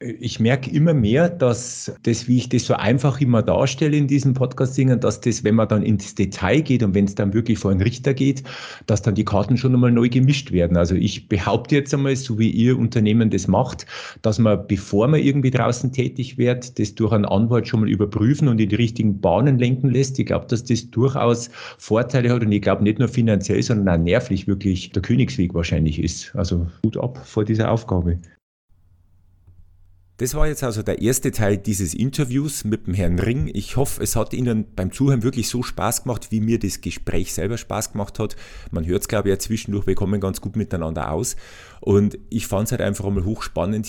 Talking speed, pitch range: 210 wpm, 95-120 Hz